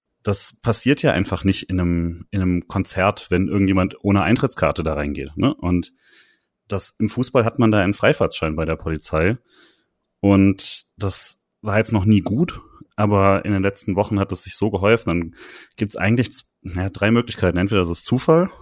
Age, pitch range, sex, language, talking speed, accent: 30-49, 90-110 Hz, male, German, 185 wpm, German